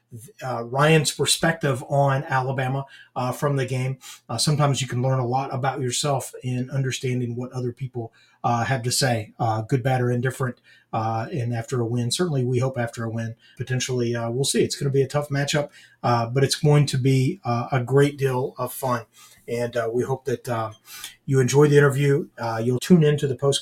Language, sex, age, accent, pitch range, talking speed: English, male, 40-59, American, 120-140 Hz, 210 wpm